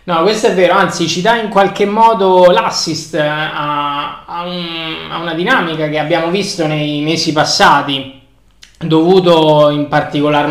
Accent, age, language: native, 20-39, Italian